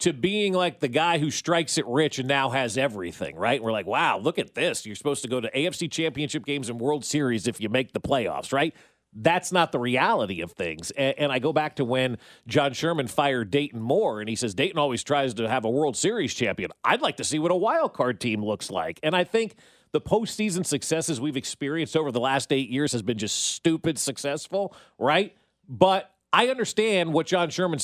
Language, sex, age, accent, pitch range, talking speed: English, male, 40-59, American, 135-180 Hz, 220 wpm